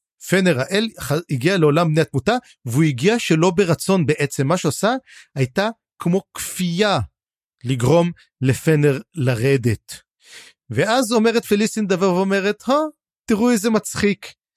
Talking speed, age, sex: 110 wpm, 40-59, male